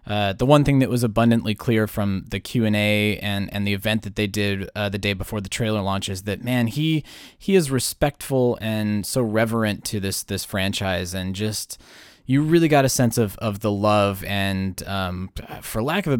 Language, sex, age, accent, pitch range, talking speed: English, male, 20-39, American, 100-140 Hz, 210 wpm